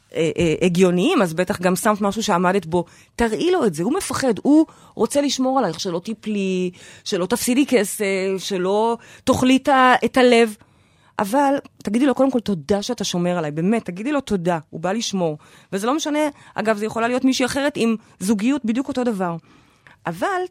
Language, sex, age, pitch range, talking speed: Hebrew, female, 30-49, 210-300 Hz, 175 wpm